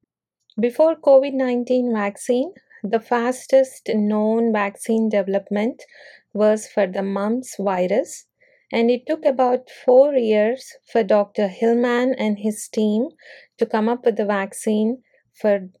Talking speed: 120 wpm